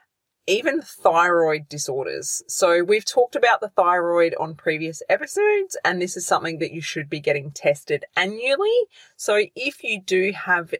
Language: English